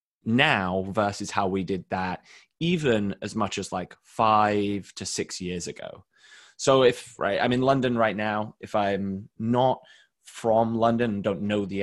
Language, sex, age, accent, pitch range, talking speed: English, male, 20-39, British, 100-120 Hz, 160 wpm